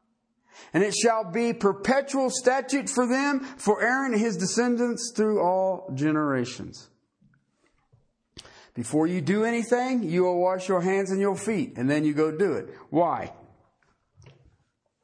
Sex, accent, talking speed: male, American, 140 wpm